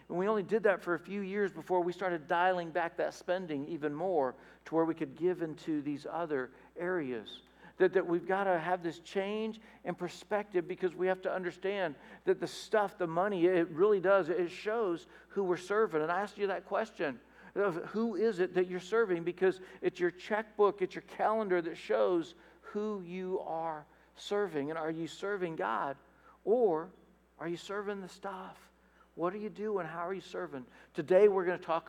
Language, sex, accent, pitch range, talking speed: English, male, American, 165-200 Hz, 200 wpm